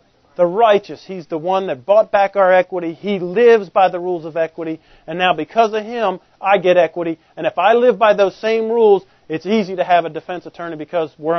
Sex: male